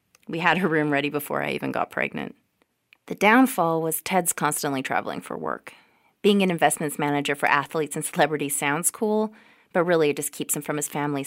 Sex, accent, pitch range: female, American, 140-170 Hz